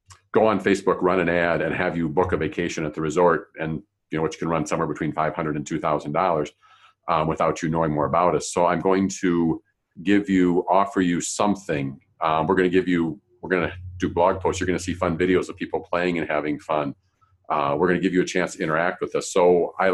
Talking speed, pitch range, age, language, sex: 235 wpm, 85-100 Hz, 50-69, English, male